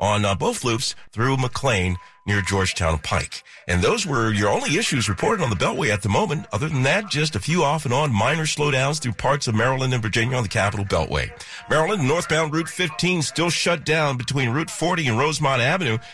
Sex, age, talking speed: male, 50-69, 205 wpm